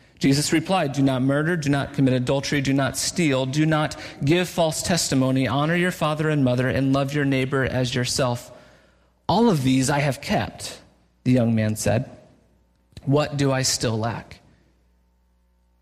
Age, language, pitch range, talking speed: 40-59, English, 130-190 Hz, 165 wpm